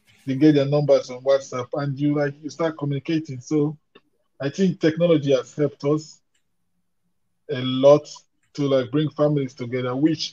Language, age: English, 20-39